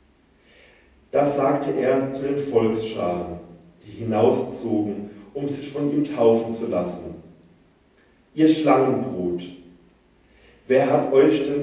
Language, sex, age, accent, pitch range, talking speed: German, male, 40-59, German, 110-145 Hz, 110 wpm